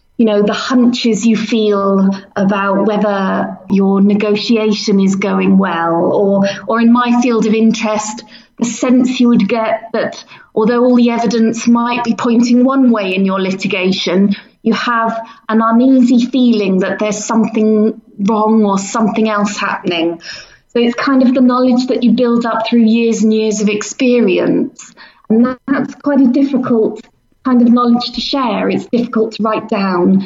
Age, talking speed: 30-49, 160 wpm